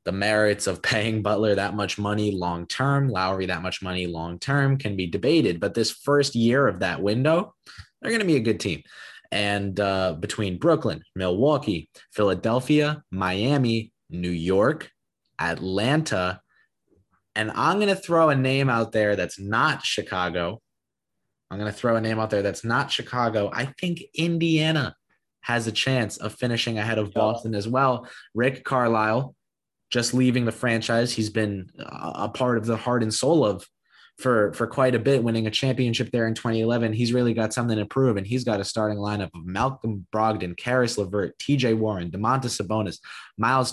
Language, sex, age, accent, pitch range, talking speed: English, male, 20-39, American, 100-125 Hz, 175 wpm